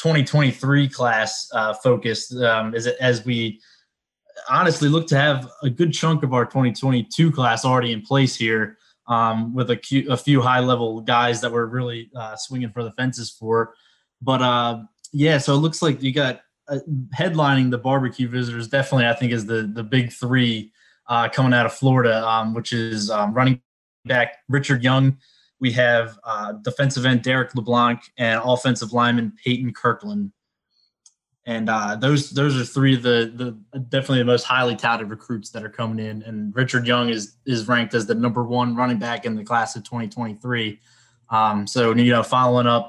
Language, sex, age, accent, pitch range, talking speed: English, male, 20-39, American, 115-130 Hz, 180 wpm